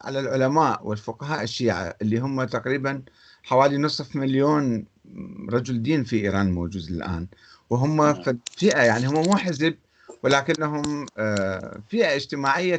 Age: 50-69